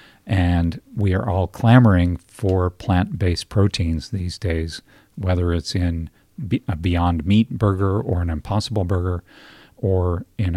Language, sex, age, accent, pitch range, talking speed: English, male, 50-69, American, 85-105 Hz, 130 wpm